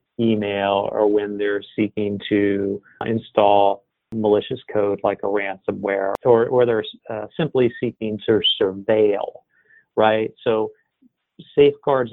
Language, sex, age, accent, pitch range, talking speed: English, male, 40-59, American, 105-135 Hz, 115 wpm